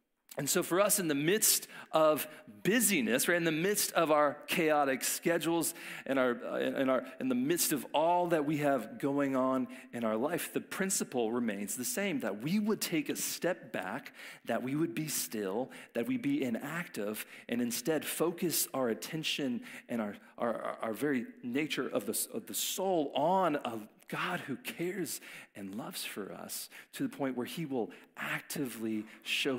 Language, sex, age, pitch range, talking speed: English, male, 40-59, 130-190 Hz, 175 wpm